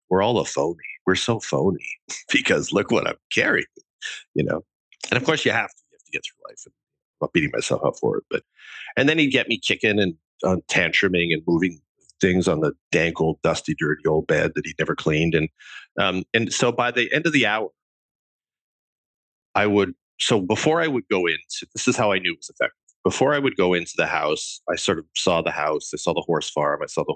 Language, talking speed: English, 235 wpm